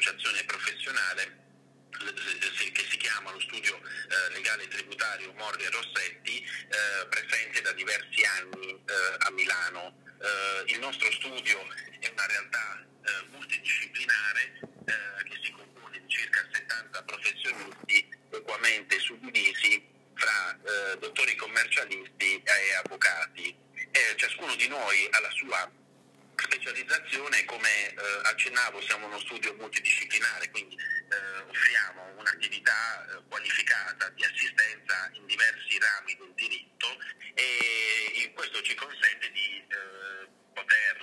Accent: native